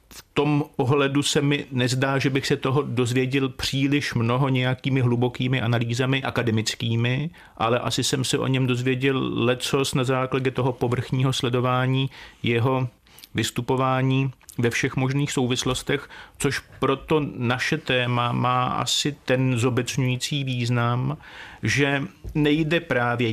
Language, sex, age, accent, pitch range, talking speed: Czech, male, 40-59, native, 120-140 Hz, 125 wpm